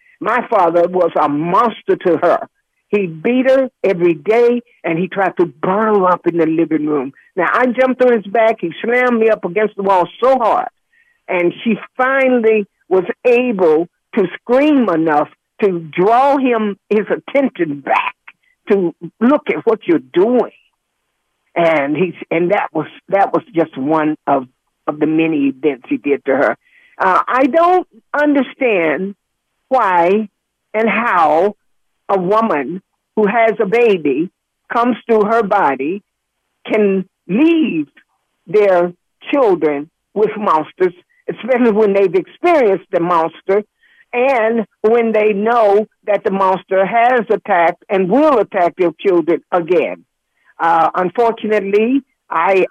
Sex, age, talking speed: male, 60-79, 140 wpm